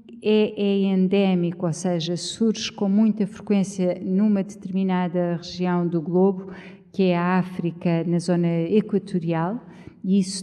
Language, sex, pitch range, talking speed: Portuguese, female, 175-210 Hz, 130 wpm